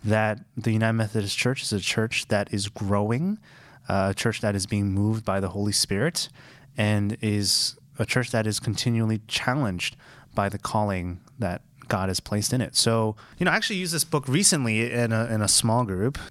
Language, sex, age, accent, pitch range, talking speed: English, male, 20-39, American, 105-135 Hz, 200 wpm